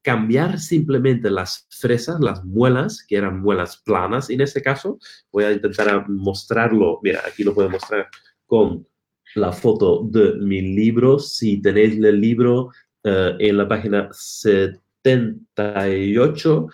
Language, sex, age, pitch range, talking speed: Spanish, male, 30-49, 100-130 Hz, 135 wpm